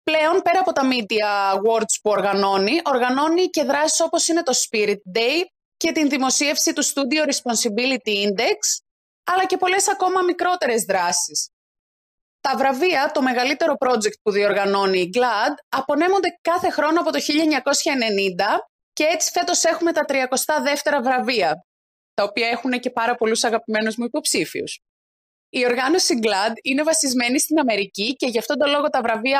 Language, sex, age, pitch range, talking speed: Greek, female, 20-39, 225-315 Hz, 150 wpm